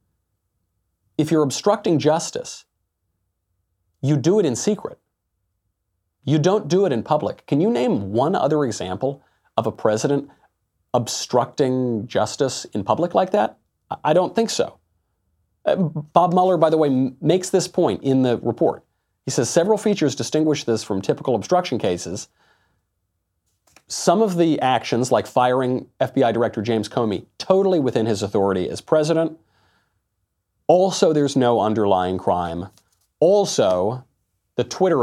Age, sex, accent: 40-59, male, American